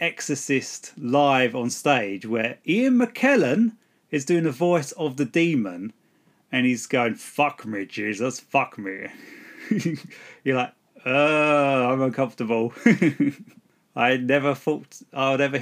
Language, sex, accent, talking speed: English, male, British, 125 wpm